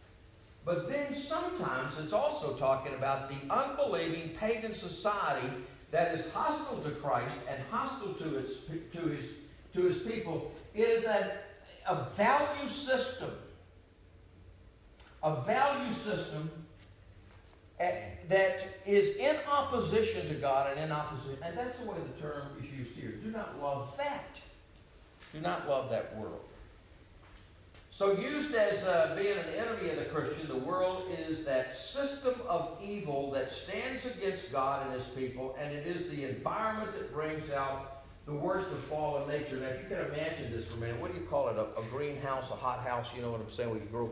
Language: English